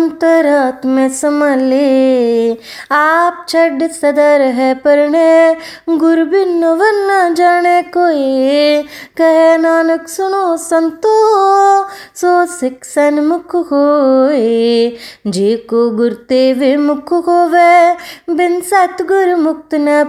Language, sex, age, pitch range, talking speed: Punjabi, female, 20-39, 265-340 Hz, 85 wpm